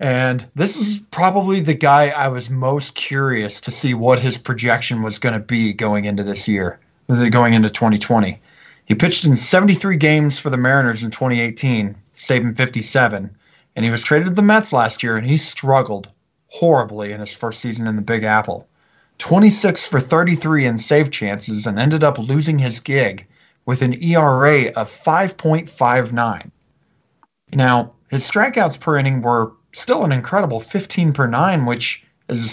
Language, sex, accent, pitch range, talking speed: English, male, American, 115-160 Hz, 170 wpm